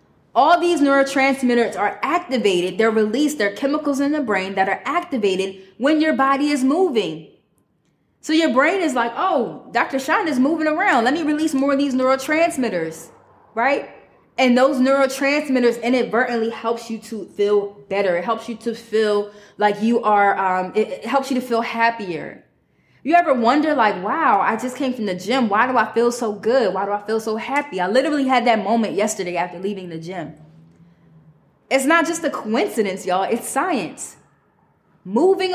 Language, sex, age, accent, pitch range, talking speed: English, female, 20-39, American, 205-275 Hz, 180 wpm